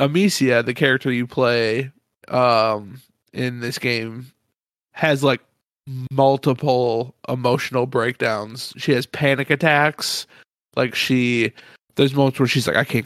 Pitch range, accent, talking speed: 120-140 Hz, American, 125 wpm